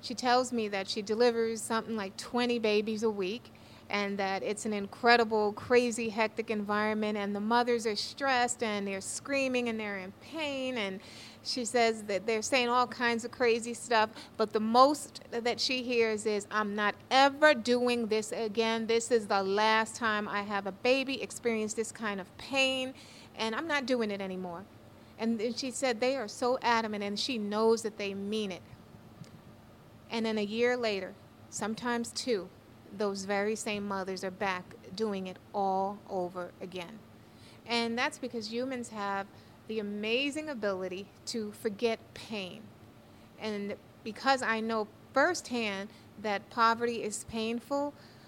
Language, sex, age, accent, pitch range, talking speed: English, female, 30-49, American, 205-240 Hz, 160 wpm